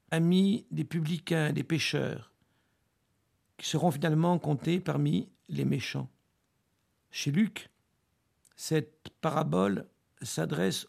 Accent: French